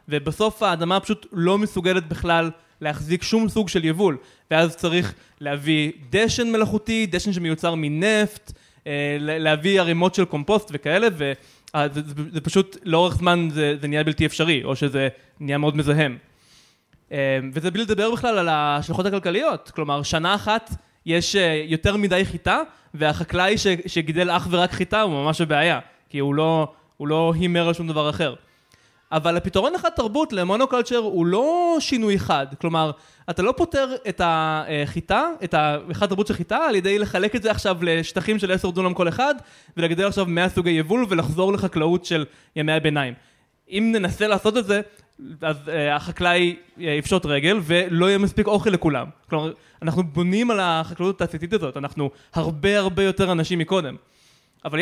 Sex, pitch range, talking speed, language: male, 155-200 Hz, 155 wpm, Hebrew